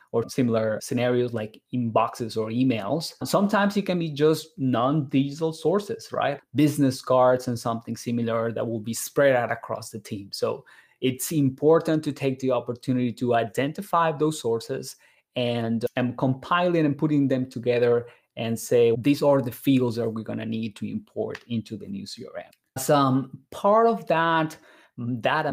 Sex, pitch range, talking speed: male, 120-145 Hz, 160 wpm